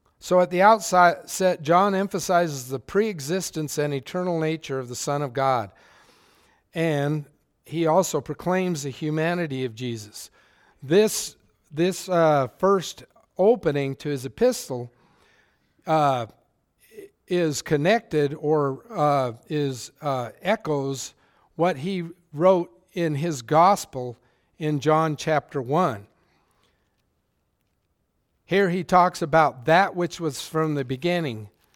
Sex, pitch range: male, 130-175 Hz